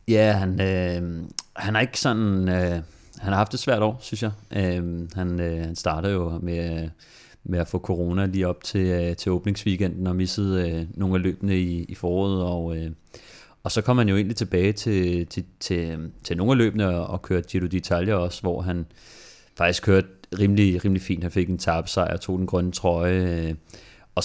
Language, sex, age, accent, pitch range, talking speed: Danish, male, 30-49, native, 90-100 Hz, 190 wpm